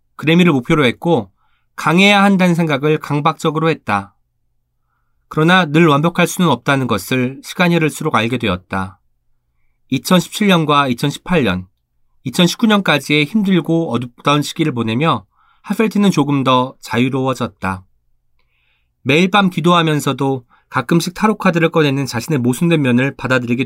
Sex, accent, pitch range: male, native, 115-170 Hz